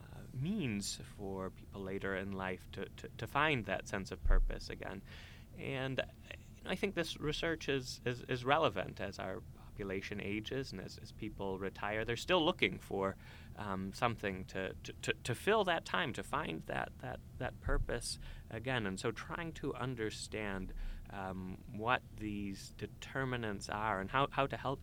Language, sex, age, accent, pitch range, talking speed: English, male, 30-49, American, 95-130 Hz, 170 wpm